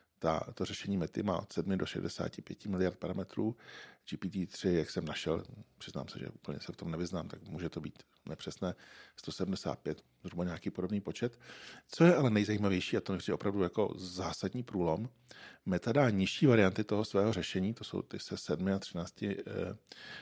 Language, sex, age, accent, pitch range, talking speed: Czech, male, 40-59, native, 90-105 Hz, 170 wpm